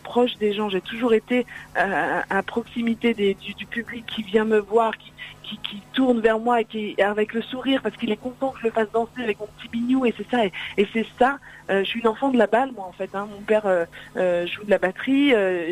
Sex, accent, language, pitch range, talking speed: female, French, French, 185-230 Hz, 265 wpm